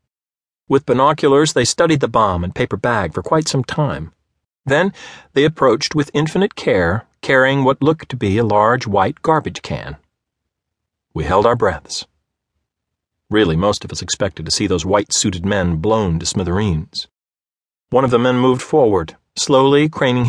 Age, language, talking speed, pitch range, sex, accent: 50-69, English, 160 wpm, 80-135 Hz, male, American